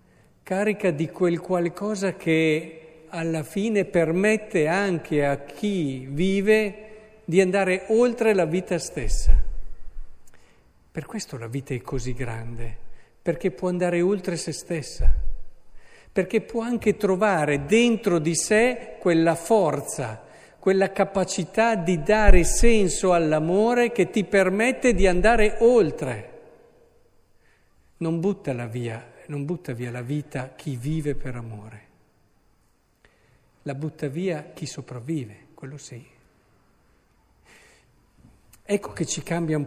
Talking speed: 115 wpm